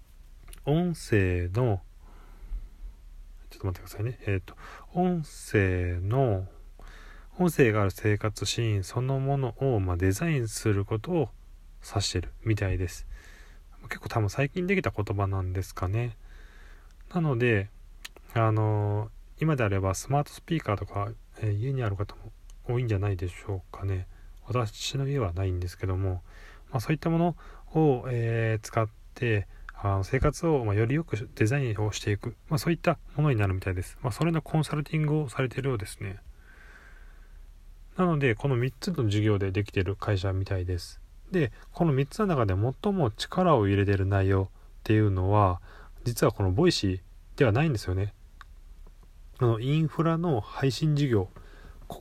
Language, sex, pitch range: Japanese, male, 95-130 Hz